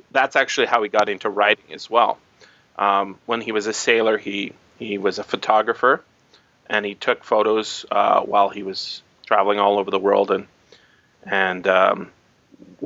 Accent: American